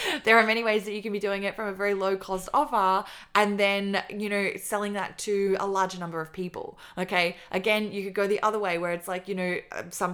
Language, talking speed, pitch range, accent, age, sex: English, 250 wpm, 175-200 Hz, Australian, 20-39, female